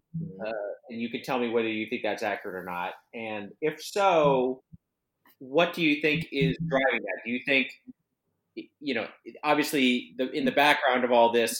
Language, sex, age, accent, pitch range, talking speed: English, male, 30-49, American, 110-150 Hz, 185 wpm